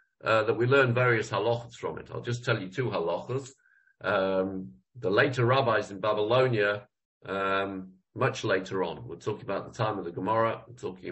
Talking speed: 185 wpm